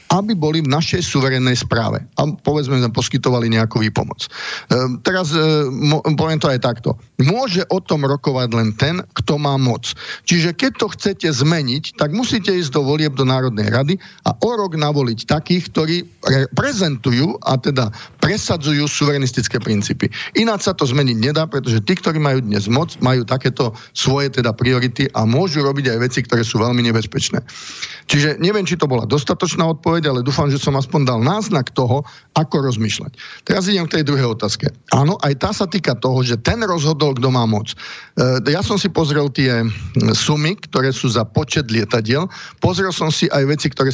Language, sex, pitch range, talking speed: Slovak, male, 125-155 Hz, 180 wpm